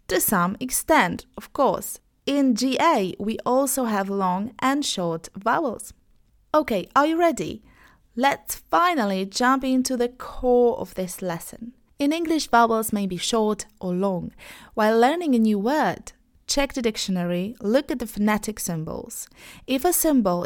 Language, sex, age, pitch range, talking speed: Polish, female, 30-49, 200-260 Hz, 150 wpm